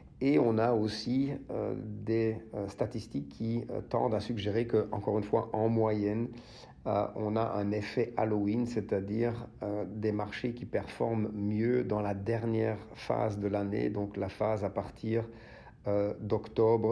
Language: English